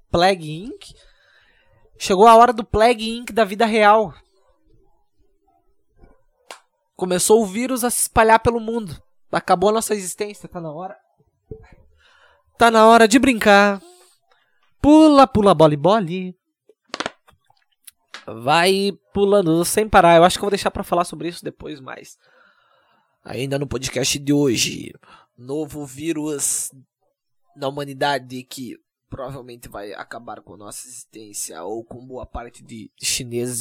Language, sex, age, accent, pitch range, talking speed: Portuguese, male, 20-39, Brazilian, 145-230 Hz, 130 wpm